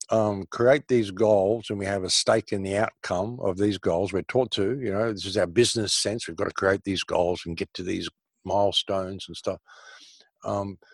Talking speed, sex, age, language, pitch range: 215 wpm, male, 50-69, English, 90-110 Hz